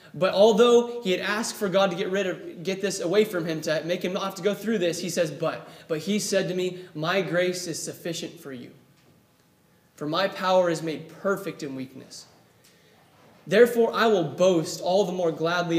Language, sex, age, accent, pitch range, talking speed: English, male, 20-39, American, 160-210 Hz, 210 wpm